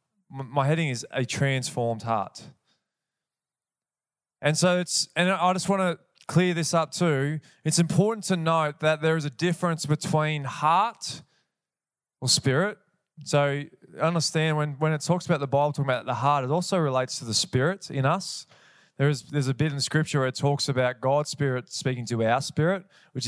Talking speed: 185 wpm